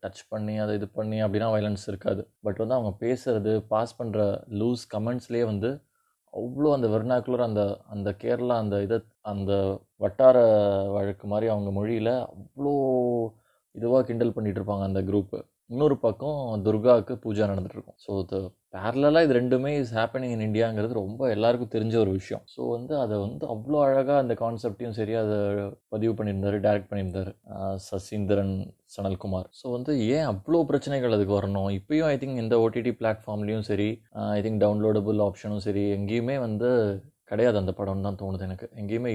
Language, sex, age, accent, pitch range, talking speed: Tamil, male, 20-39, native, 100-120 Hz, 150 wpm